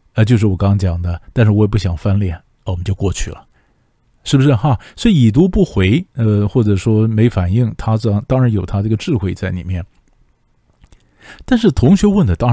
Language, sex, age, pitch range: Chinese, male, 50-69, 95-135 Hz